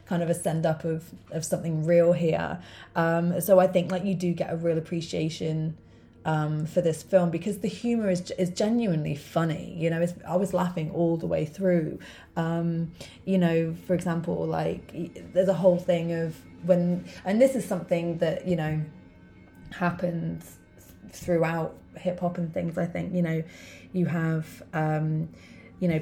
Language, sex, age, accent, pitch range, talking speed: English, female, 20-39, British, 160-180 Hz, 170 wpm